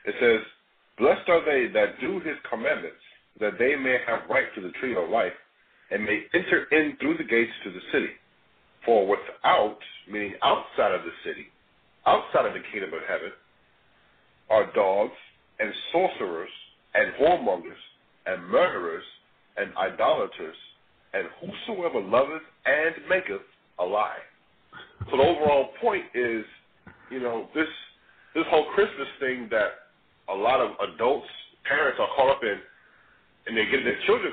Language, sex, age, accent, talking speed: English, male, 50-69, American, 150 wpm